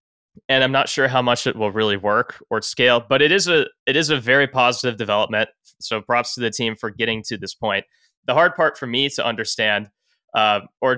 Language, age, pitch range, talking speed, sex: English, 20-39, 105-130 Hz, 225 wpm, male